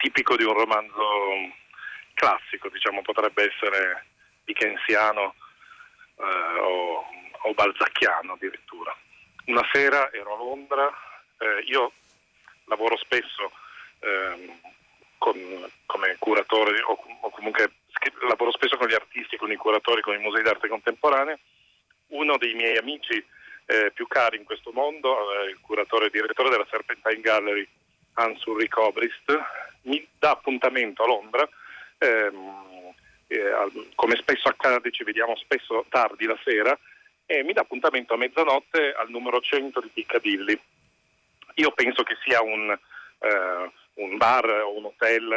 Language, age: Italian, 40-59